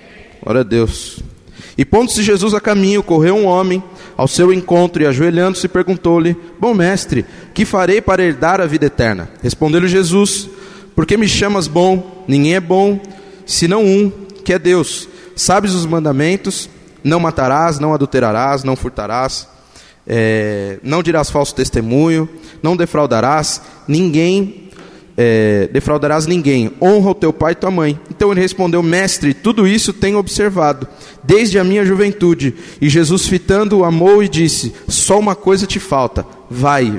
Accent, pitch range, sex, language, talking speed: Brazilian, 140-190 Hz, male, Portuguese, 150 wpm